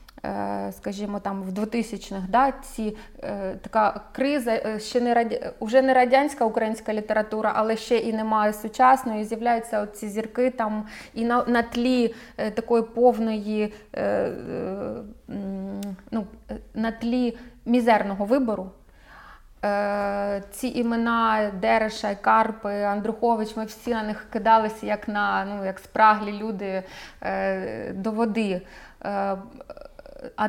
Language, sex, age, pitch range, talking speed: Ukrainian, female, 20-39, 200-235 Hz, 105 wpm